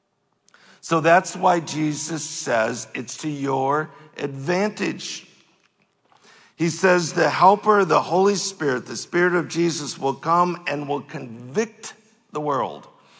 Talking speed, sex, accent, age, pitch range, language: 125 wpm, male, American, 50-69, 145-195 Hz, English